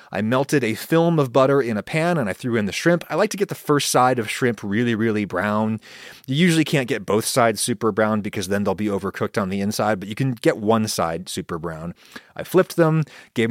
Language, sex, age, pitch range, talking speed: English, male, 30-49, 110-150 Hz, 245 wpm